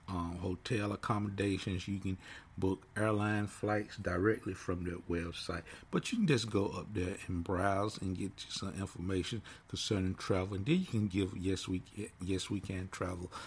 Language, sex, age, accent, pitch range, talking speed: English, male, 50-69, American, 85-100 Hz, 175 wpm